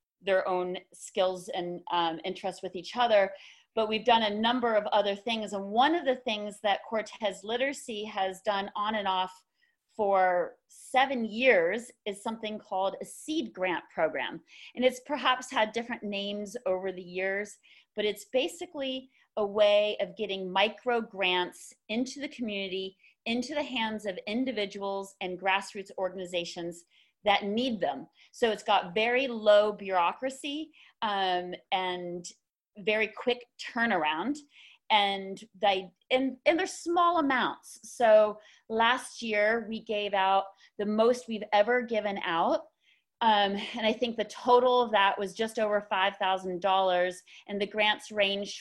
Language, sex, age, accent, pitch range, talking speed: English, female, 40-59, American, 195-240 Hz, 150 wpm